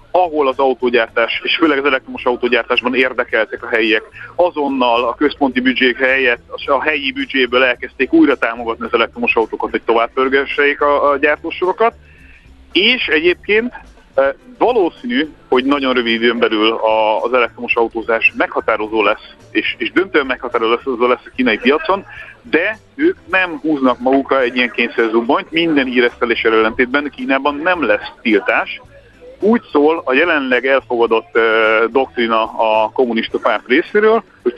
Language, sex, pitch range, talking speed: Hungarian, male, 115-165 Hz, 145 wpm